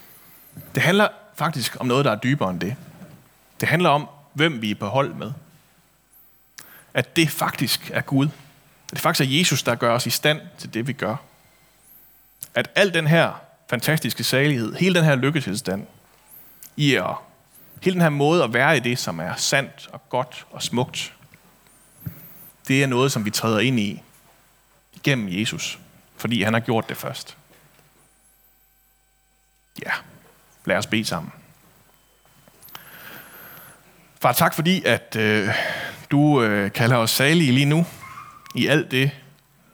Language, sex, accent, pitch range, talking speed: Danish, male, native, 120-160 Hz, 155 wpm